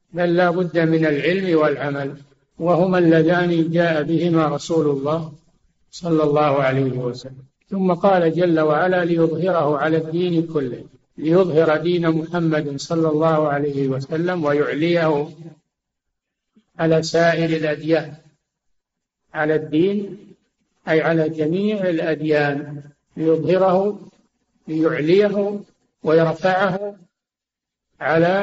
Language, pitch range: Arabic, 155-185 Hz